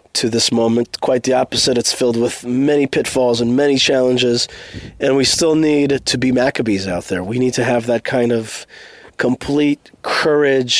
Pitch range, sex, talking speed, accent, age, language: 120-145 Hz, male, 180 wpm, American, 30-49, English